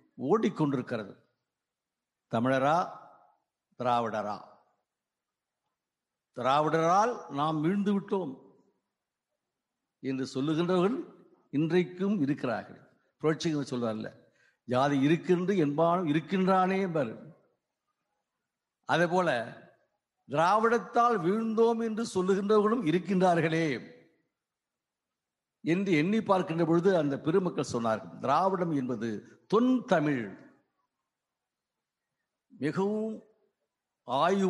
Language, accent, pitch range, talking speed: Tamil, native, 150-215 Hz, 60 wpm